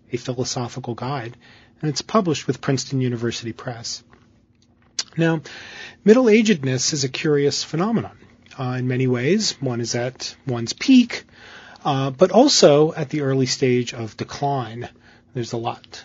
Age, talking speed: 40-59, 135 wpm